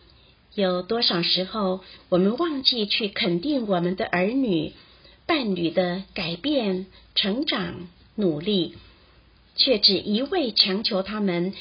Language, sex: Chinese, female